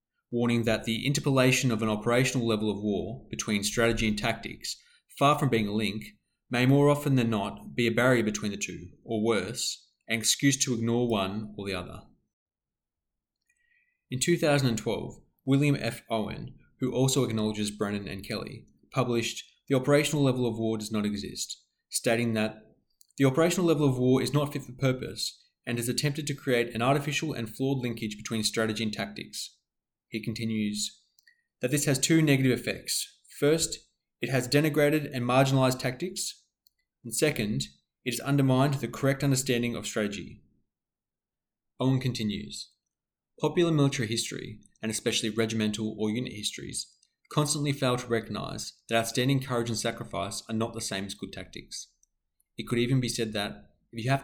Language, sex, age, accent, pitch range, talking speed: English, male, 20-39, Australian, 110-135 Hz, 160 wpm